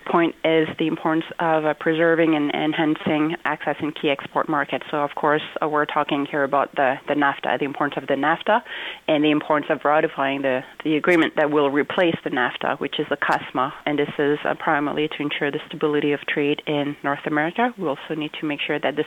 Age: 30-49